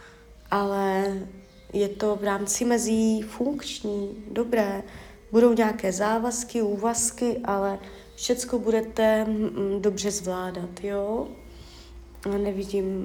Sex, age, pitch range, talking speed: female, 30-49, 195-220 Hz, 95 wpm